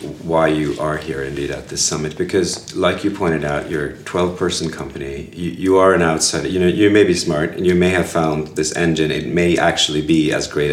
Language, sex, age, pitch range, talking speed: English, male, 30-49, 80-90 Hz, 230 wpm